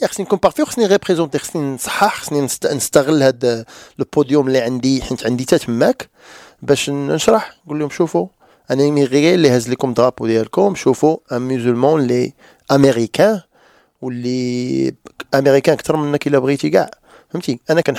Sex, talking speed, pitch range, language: male, 50 wpm, 130-170 Hz, French